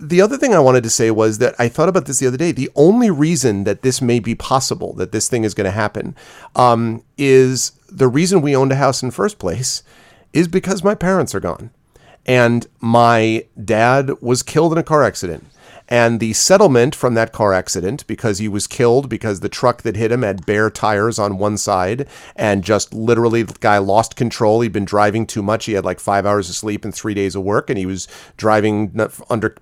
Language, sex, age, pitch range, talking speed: English, male, 40-59, 105-125 Hz, 225 wpm